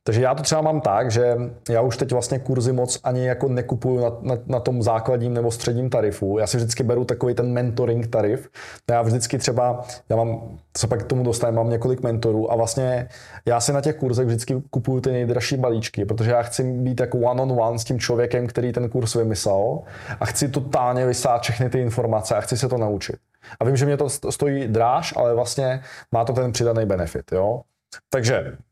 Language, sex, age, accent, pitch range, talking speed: Czech, male, 20-39, native, 115-130 Hz, 210 wpm